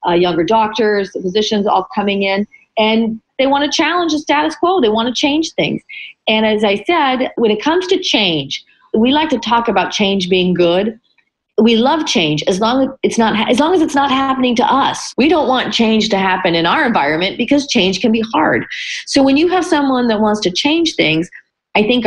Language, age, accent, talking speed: English, 40-59, American, 220 wpm